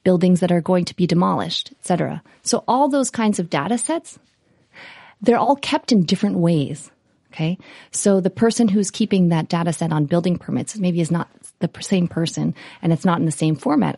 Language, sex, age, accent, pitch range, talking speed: English, female, 30-49, American, 165-205 Hz, 200 wpm